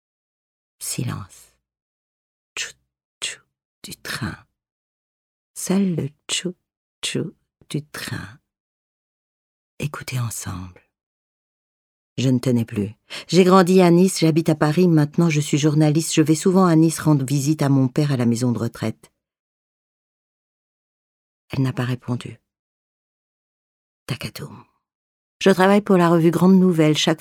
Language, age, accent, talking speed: French, 50-69, French, 120 wpm